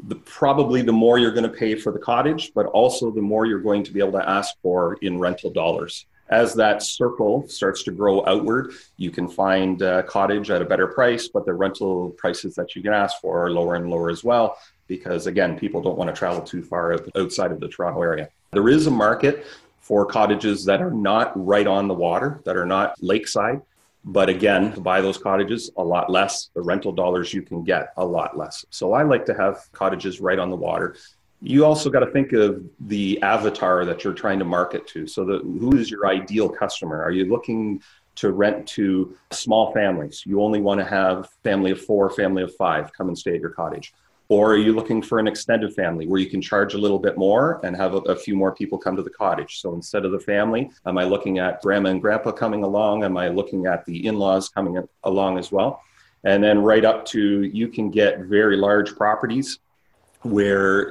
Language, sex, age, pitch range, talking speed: English, male, 30-49, 95-110 Hz, 220 wpm